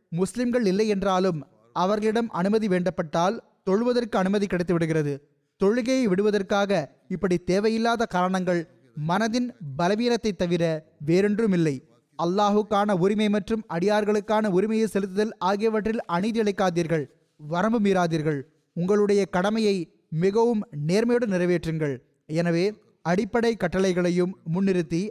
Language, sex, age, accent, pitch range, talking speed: Tamil, male, 20-39, native, 175-210 Hz, 90 wpm